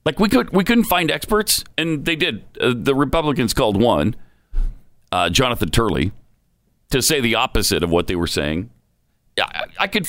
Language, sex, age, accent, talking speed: English, male, 40-59, American, 180 wpm